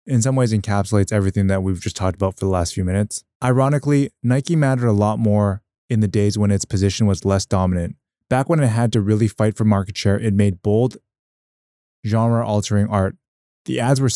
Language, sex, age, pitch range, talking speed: English, male, 20-39, 100-115 Hz, 210 wpm